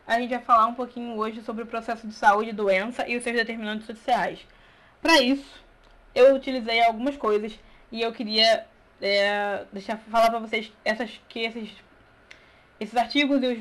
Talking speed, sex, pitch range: 170 wpm, female, 210-245 Hz